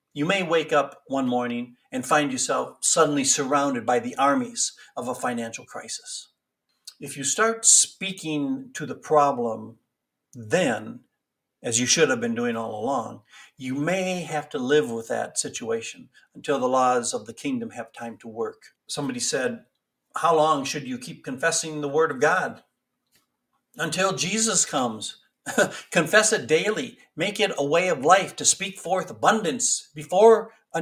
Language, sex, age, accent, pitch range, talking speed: English, male, 60-79, American, 140-215 Hz, 160 wpm